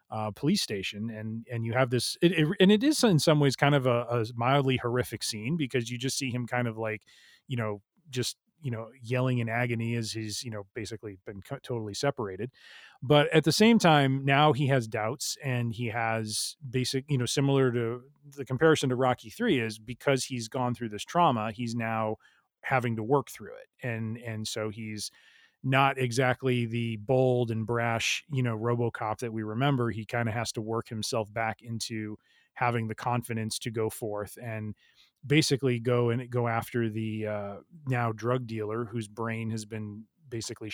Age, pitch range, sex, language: 30-49, 110-130 Hz, male, English